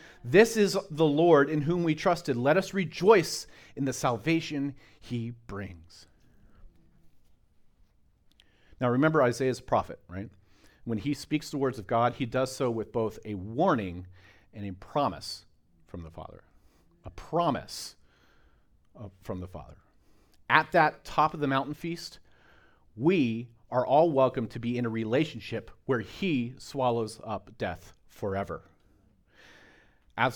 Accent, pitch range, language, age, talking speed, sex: American, 90-140 Hz, English, 40-59, 135 wpm, male